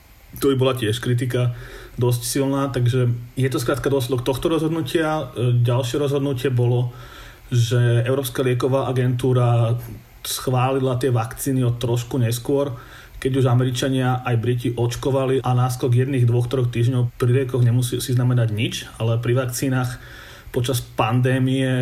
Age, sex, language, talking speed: 30-49, male, Slovak, 135 wpm